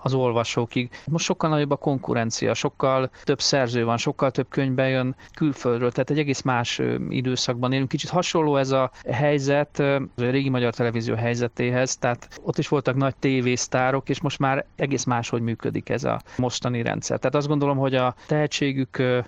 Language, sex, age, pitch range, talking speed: Hungarian, male, 40-59, 125-140 Hz, 170 wpm